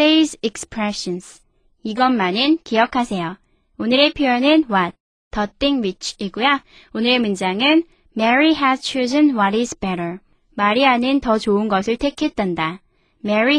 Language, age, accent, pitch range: Korean, 20-39, native, 215-295 Hz